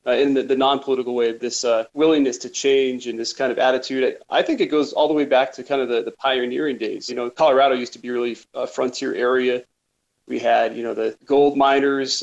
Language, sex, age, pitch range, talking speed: English, male, 30-49, 125-145 Hz, 240 wpm